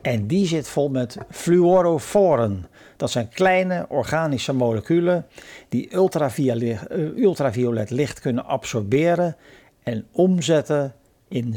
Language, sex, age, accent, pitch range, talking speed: Dutch, male, 50-69, Dutch, 115-145 Hz, 105 wpm